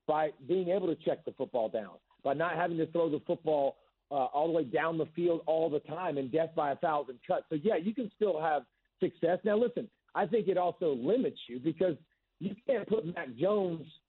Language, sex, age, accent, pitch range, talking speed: English, male, 40-59, American, 150-195 Hz, 220 wpm